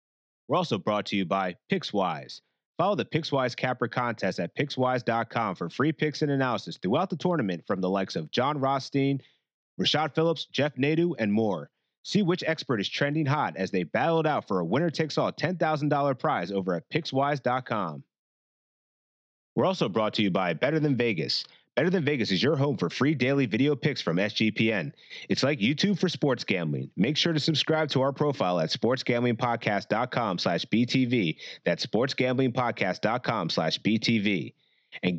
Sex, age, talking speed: male, 30-49, 165 wpm